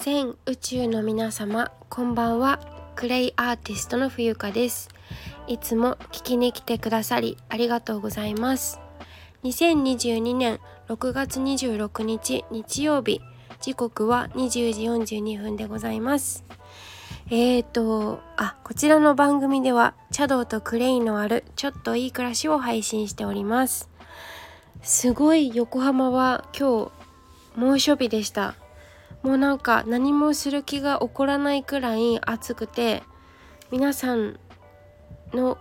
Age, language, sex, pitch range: 20-39, Japanese, female, 220-265 Hz